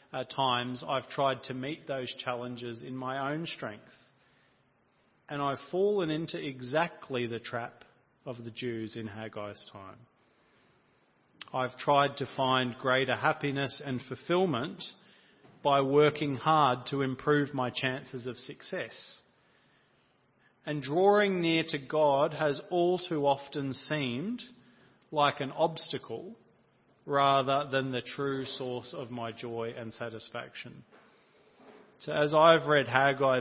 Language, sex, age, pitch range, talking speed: English, male, 40-59, 120-150 Hz, 125 wpm